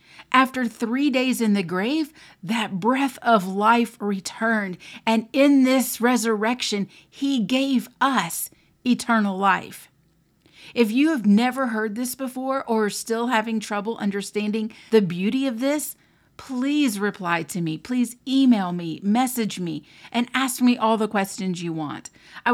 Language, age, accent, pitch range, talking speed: English, 40-59, American, 190-245 Hz, 145 wpm